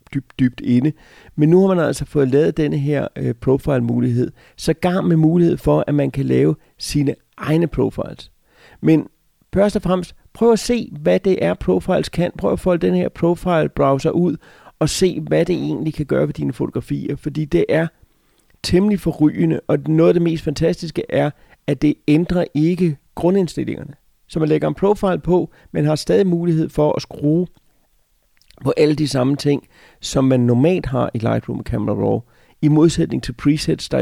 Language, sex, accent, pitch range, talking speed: Danish, male, native, 135-170 Hz, 180 wpm